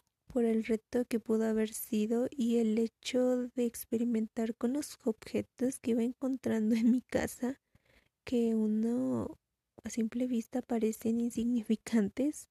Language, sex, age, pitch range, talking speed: Spanish, female, 20-39, 225-250 Hz, 135 wpm